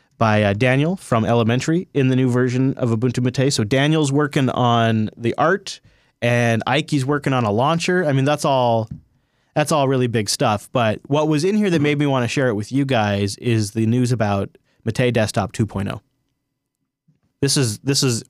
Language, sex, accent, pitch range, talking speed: English, male, American, 115-145 Hz, 190 wpm